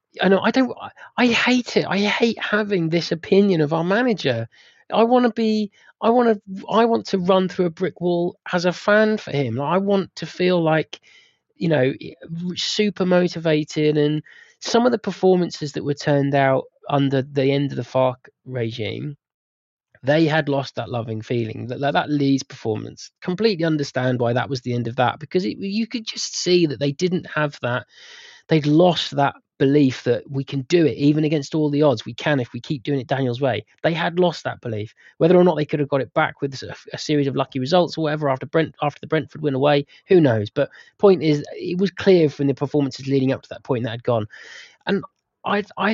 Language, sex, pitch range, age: English, male, 135-180 Hz, 20-39